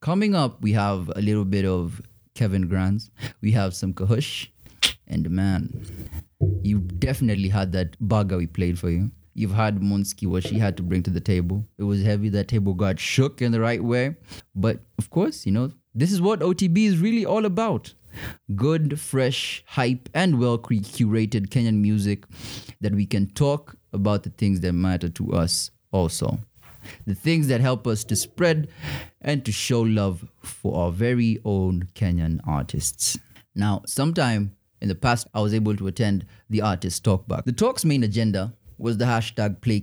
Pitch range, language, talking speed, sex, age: 95-120 Hz, English, 175 wpm, male, 20-39